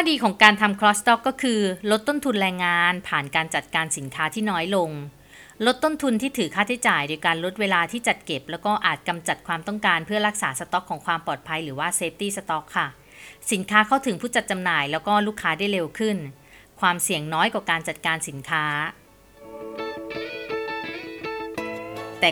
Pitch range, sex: 160-220 Hz, female